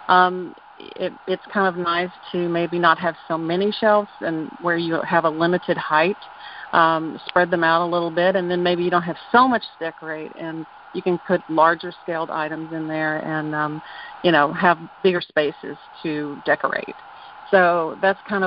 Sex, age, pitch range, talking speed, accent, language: female, 40-59, 160-185 Hz, 190 wpm, American, English